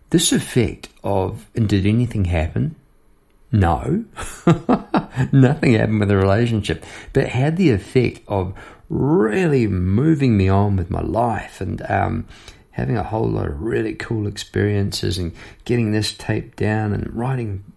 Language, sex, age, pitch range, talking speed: English, male, 50-69, 95-120 Hz, 145 wpm